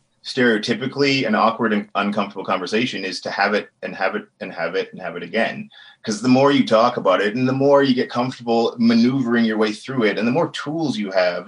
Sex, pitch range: male, 110-140 Hz